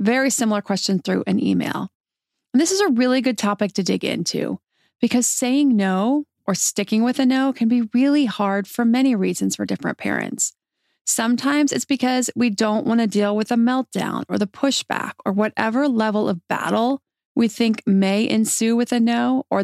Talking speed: 185 wpm